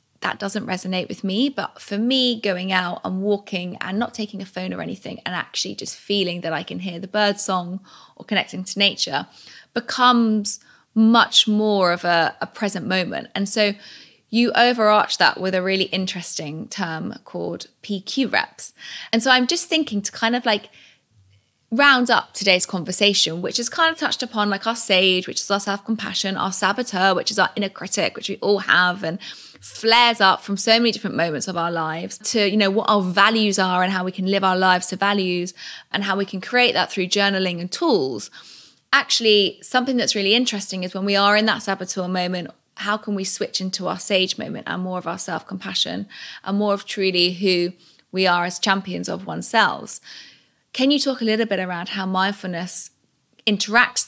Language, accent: English, British